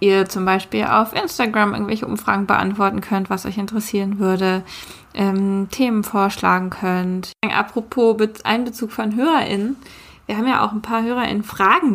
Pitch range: 200-230 Hz